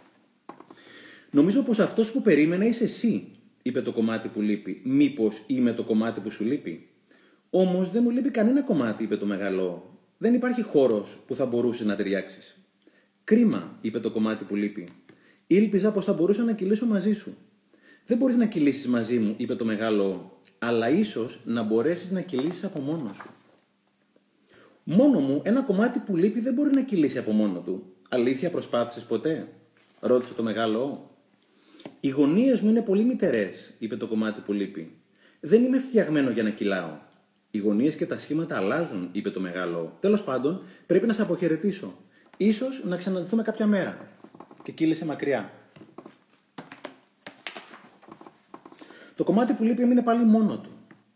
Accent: native